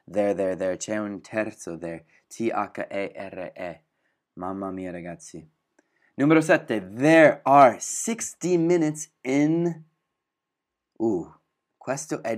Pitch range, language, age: 100-125 Hz, Italian, 20-39